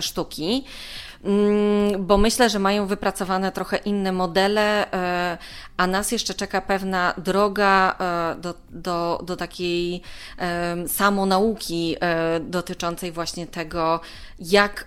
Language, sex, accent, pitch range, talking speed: Polish, female, native, 170-200 Hz, 95 wpm